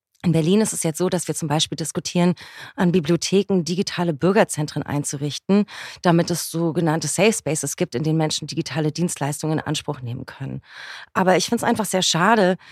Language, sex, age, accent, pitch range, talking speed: German, female, 30-49, German, 155-190 Hz, 180 wpm